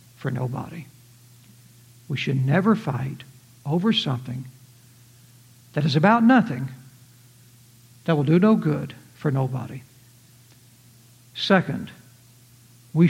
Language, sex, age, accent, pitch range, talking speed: English, male, 60-79, American, 125-190 Hz, 95 wpm